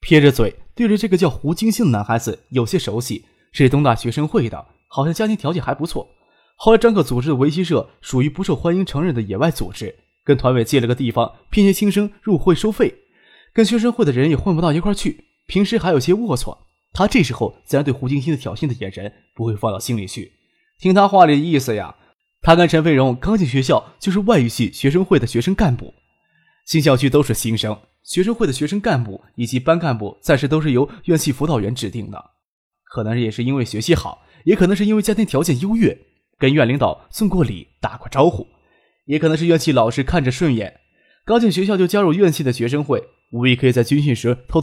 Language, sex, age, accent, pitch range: Chinese, male, 20-39, native, 120-185 Hz